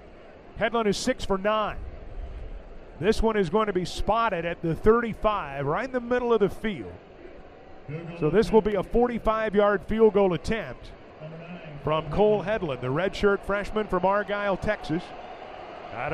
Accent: American